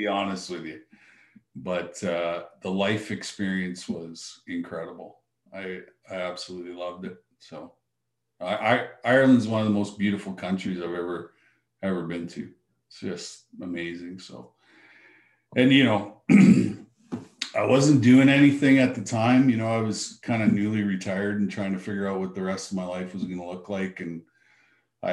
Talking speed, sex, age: 165 wpm, male, 40-59